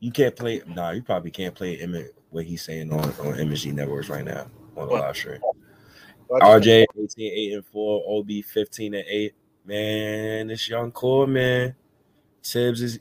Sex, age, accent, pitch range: male, 20-39, American, 90-120 Hz